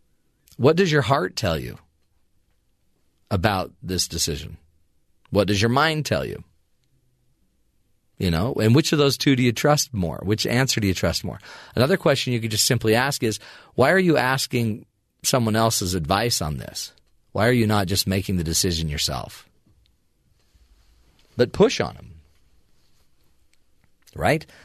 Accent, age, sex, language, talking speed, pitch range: American, 40-59, male, English, 155 wpm, 95-130 Hz